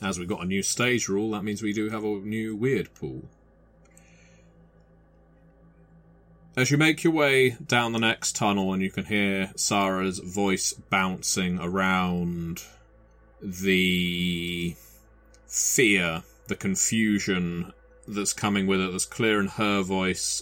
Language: English